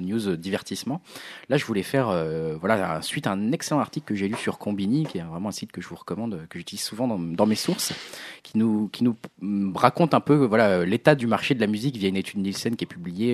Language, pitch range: French, 90-120 Hz